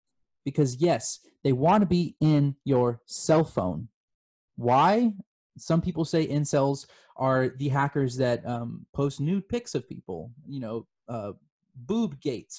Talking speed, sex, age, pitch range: 145 wpm, male, 20-39, 120-155 Hz